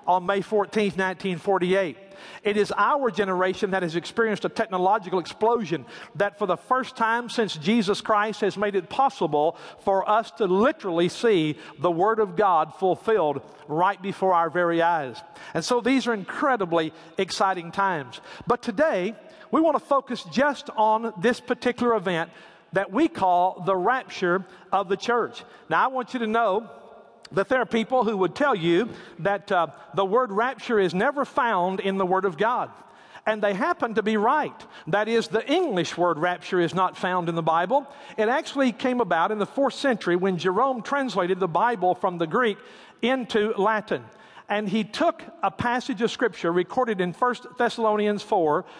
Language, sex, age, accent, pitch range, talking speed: English, male, 50-69, American, 185-240 Hz, 175 wpm